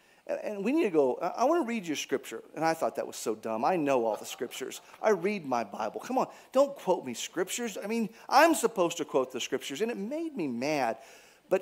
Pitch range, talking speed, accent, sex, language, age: 135-215 Hz, 245 wpm, American, male, English, 40-59